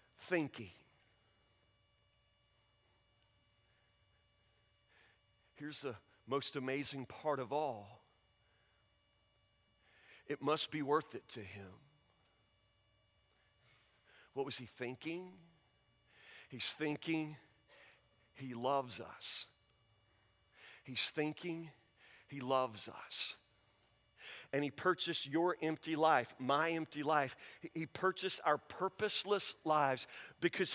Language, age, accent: English, 40-59, American